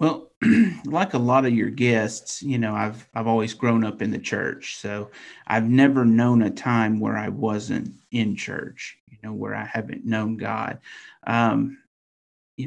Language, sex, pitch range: English, male, 105-125 Hz